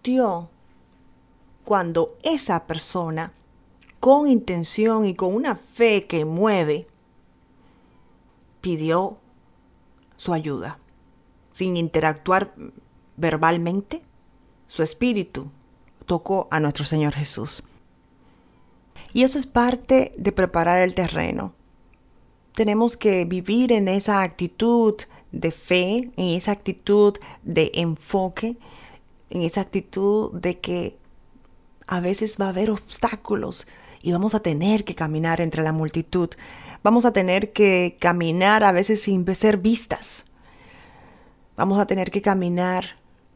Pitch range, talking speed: 165-215 Hz, 110 wpm